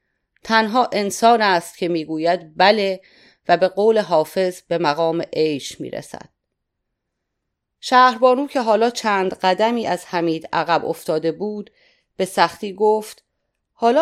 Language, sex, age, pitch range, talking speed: Persian, female, 30-49, 175-225 Hz, 125 wpm